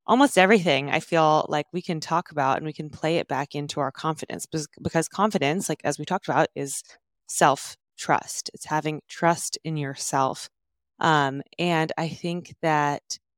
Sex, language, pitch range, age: female, English, 145-175 Hz, 20-39